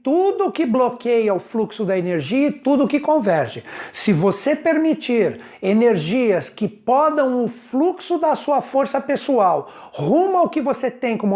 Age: 60-79